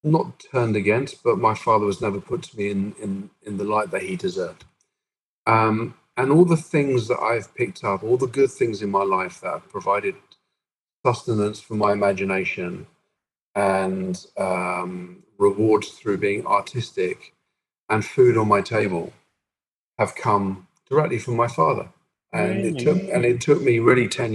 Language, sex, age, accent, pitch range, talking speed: English, male, 40-59, British, 100-120 Hz, 165 wpm